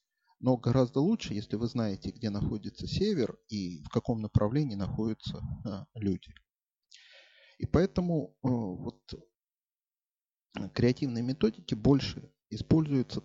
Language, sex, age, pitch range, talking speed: Russian, male, 30-49, 100-130 Hz, 110 wpm